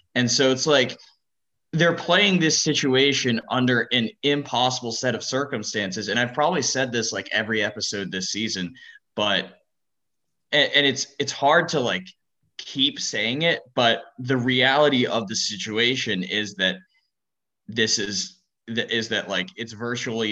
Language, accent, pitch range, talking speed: English, American, 105-130 Hz, 150 wpm